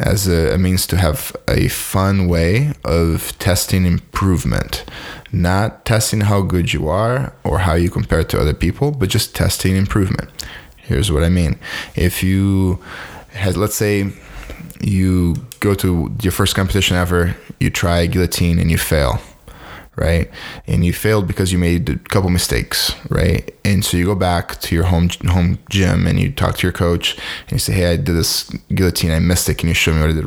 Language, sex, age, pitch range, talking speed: English, male, 10-29, 85-100 Hz, 195 wpm